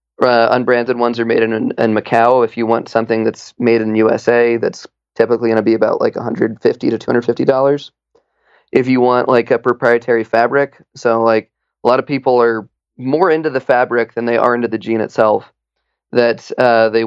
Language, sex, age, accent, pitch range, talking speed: English, male, 20-39, American, 115-125 Hz, 195 wpm